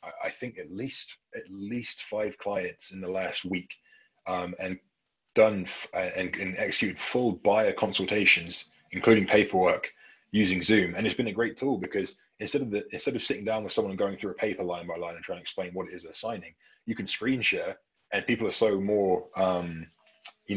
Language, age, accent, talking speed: English, 20-39, British, 205 wpm